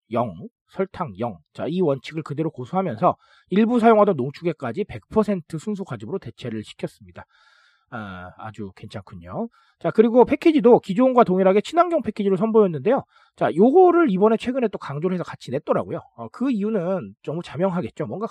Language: Korean